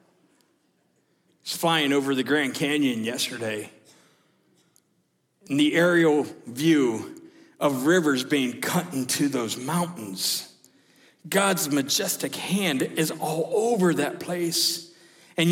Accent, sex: American, male